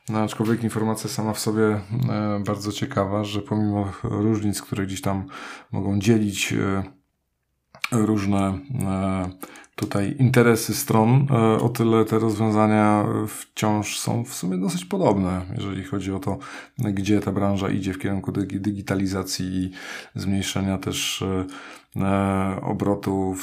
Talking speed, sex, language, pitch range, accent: 120 wpm, male, Polish, 95-110 Hz, native